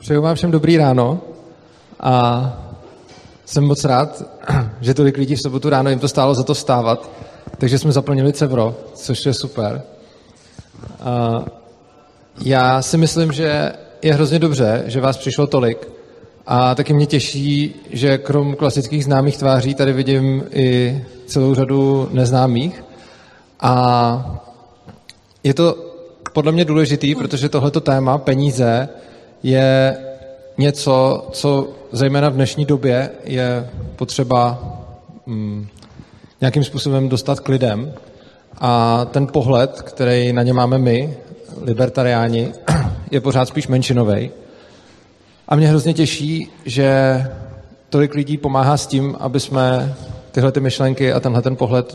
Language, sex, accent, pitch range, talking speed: Czech, male, native, 125-145 Hz, 125 wpm